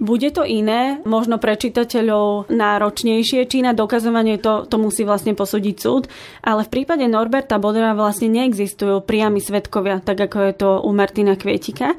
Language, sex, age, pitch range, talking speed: Slovak, female, 20-39, 205-230 Hz, 160 wpm